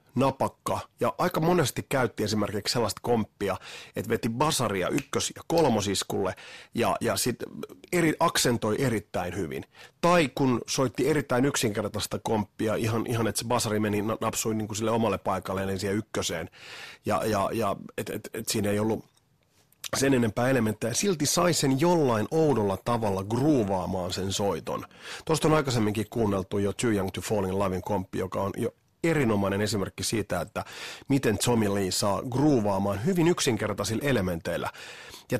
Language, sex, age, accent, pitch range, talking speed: Finnish, male, 30-49, native, 100-135 Hz, 155 wpm